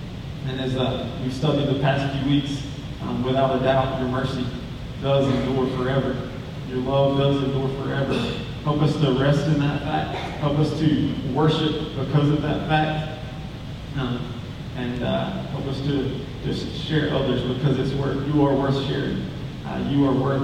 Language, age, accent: English, 20-39, American